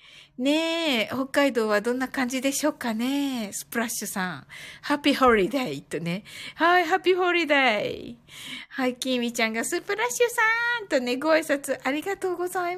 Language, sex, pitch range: Japanese, female, 230-330 Hz